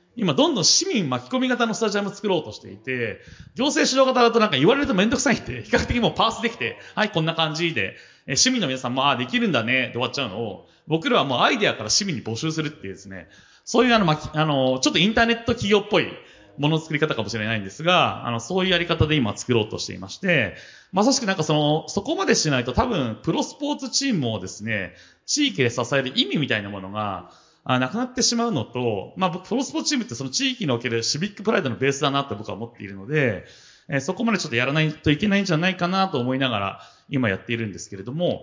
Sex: male